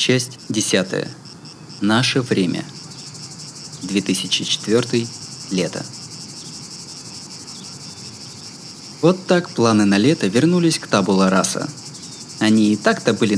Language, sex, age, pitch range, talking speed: Russian, male, 20-39, 100-155 Hz, 85 wpm